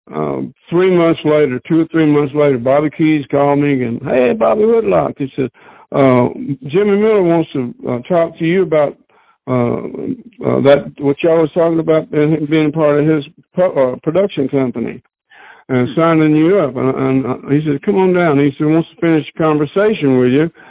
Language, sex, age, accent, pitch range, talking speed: English, male, 60-79, American, 130-160 Hz, 195 wpm